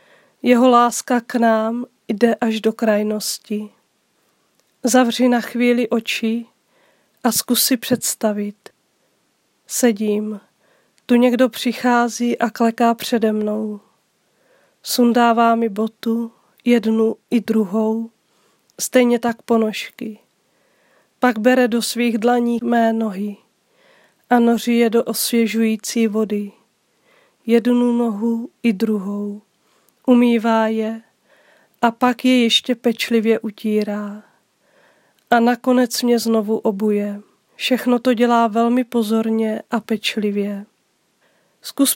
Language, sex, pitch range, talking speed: Czech, female, 220-245 Hz, 100 wpm